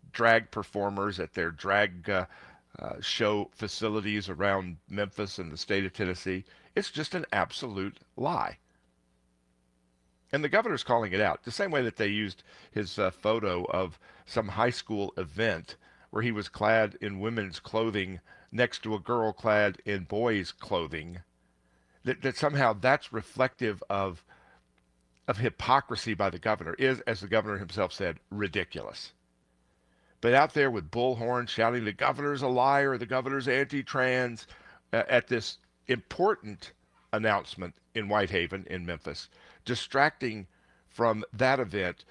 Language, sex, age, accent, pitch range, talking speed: English, male, 50-69, American, 85-110 Hz, 140 wpm